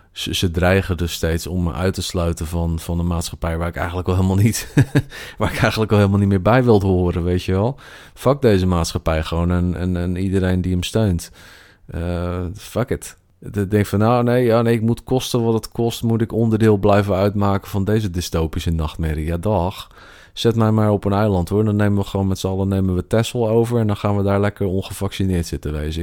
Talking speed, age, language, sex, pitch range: 225 wpm, 40-59, Dutch, male, 85-100 Hz